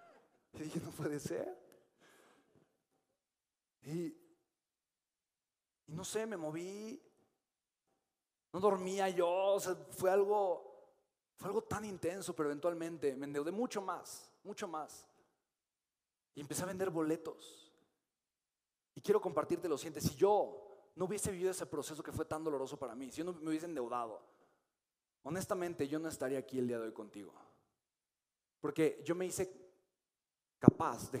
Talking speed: 140 wpm